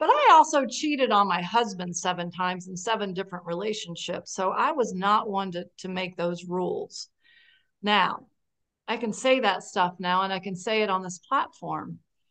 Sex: female